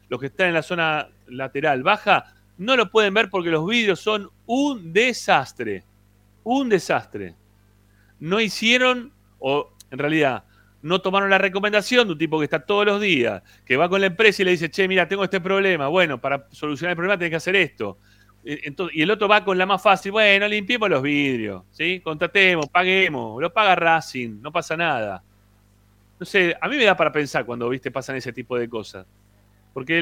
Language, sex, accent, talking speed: Spanish, male, Argentinian, 190 wpm